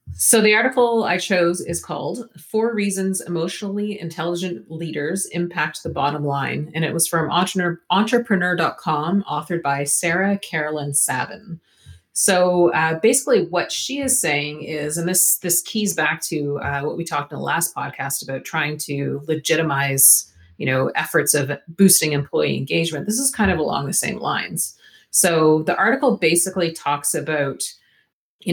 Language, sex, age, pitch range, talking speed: English, female, 30-49, 150-190 Hz, 155 wpm